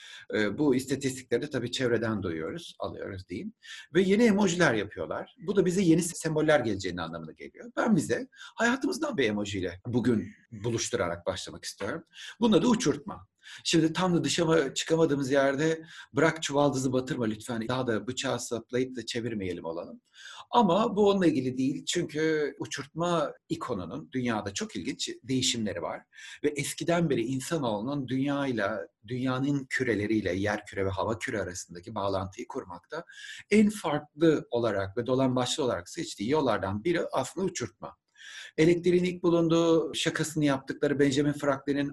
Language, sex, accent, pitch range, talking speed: Turkish, male, native, 115-160 Hz, 135 wpm